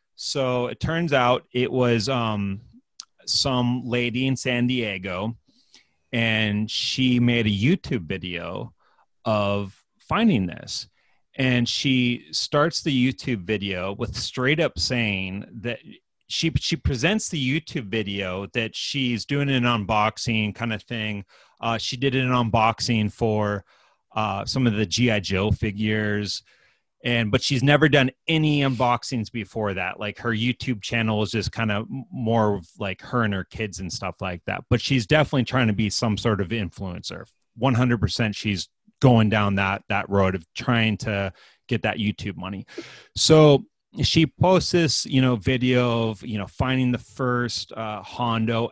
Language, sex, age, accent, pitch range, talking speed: English, male, 30-49, American, 105-130 Hz, 155 wpm